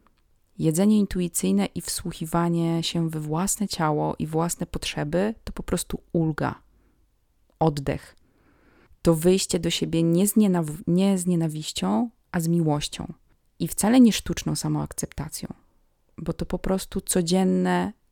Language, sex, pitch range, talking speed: Polish, female, 150-185 Hz, 125 wpm